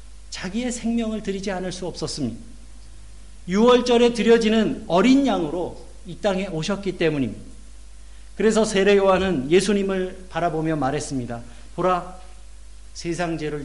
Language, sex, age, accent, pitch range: Korean, male, 50-69, native, 130-205 Hz